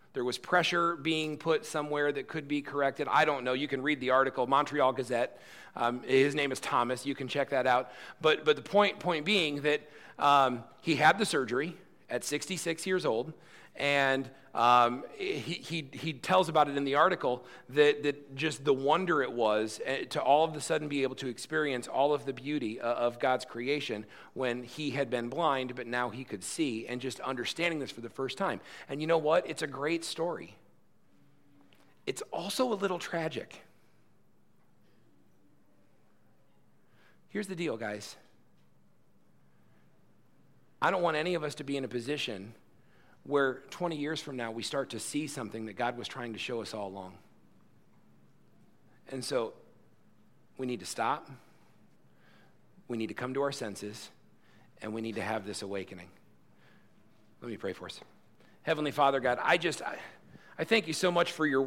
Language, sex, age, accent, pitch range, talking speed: English, male, 40-59, American, 125-155 Hz, 180 wpm